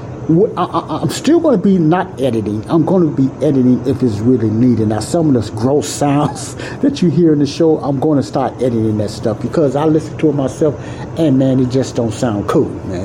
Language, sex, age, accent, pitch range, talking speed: English, male, 60-79, American, 110-145 Hz, 235 wpm